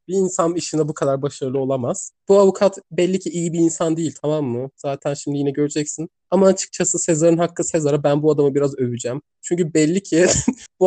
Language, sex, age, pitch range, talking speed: Turkish, male, 20-39, 135-165 Hz, 195 wpm